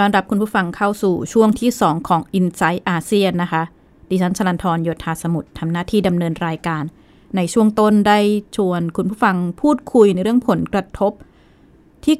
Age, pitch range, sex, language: 20-39, 170-210 Hz, female, Thai